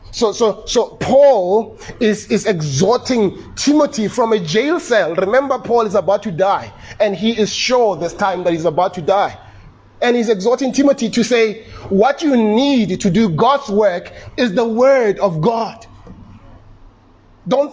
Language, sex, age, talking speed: English, male, 30-49, 165 wpm